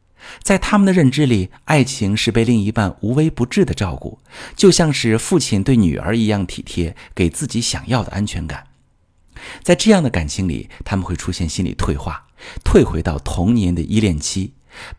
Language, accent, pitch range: Chinese, native, 85-120 Hz